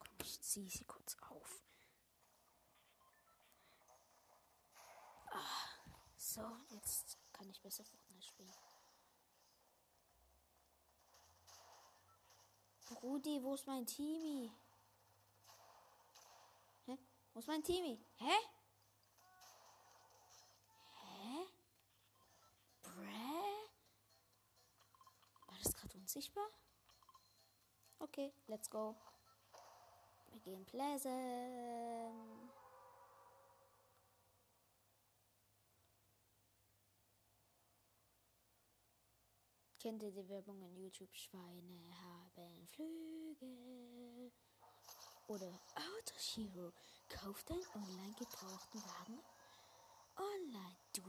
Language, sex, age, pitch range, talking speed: German, female, 20-39, 175-280 Hz, 65 wpm